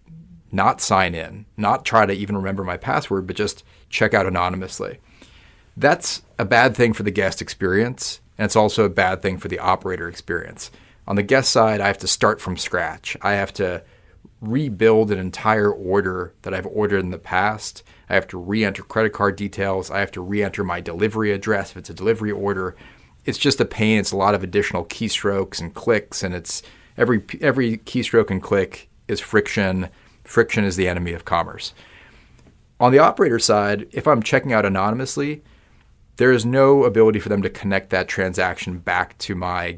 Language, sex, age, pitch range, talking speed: English, male, 40-59, 95-110 Hz, 185 wpm